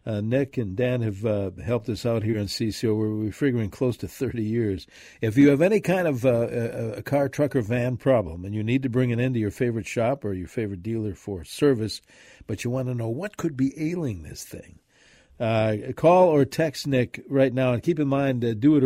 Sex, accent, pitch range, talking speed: male, American, 105-130 Hz, 235 wpm